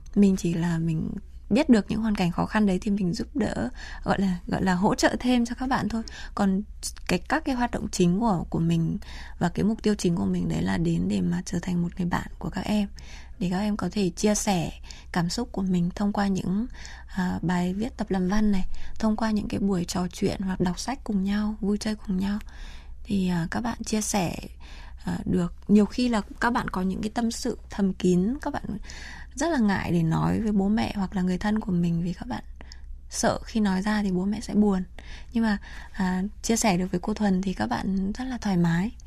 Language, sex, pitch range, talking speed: Vietnamese, female, 180-215 Hz, 245 wpm